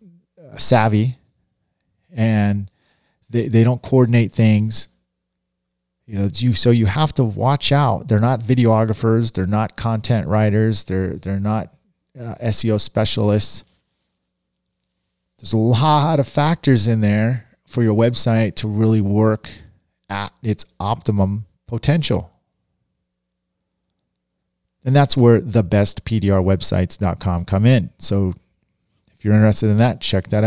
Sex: male